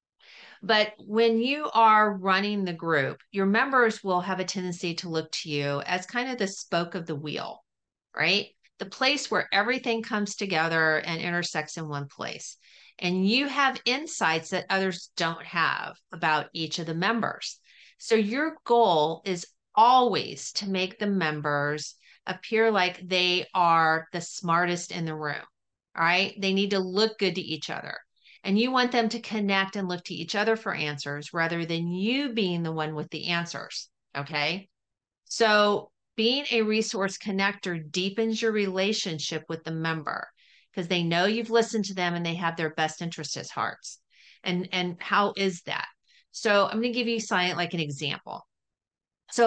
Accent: American